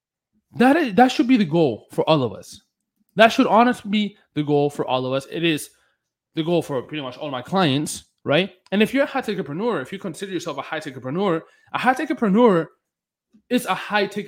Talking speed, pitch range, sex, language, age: 210 wpm, 140-220 Hz, male, English, 20-39